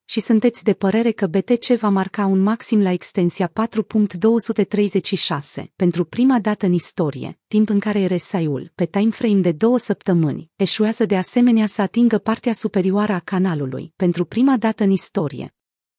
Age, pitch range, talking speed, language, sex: 30-49, 180-220 Hz, 155 wpm, Romanian, female